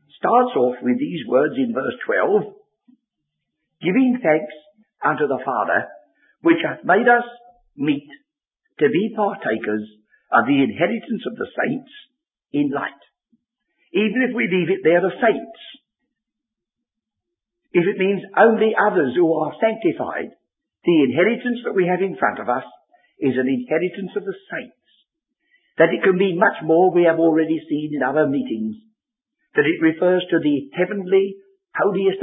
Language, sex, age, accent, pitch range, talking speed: English, male, 60-79, British, 170-255 Hz, 150 wpm